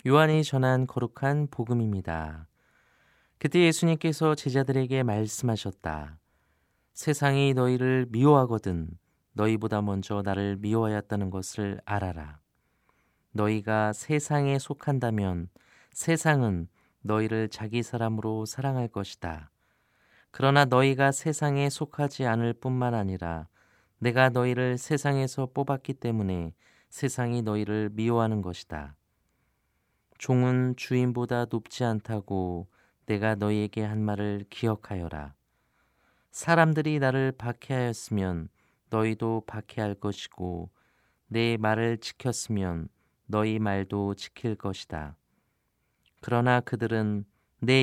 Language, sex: Korean, male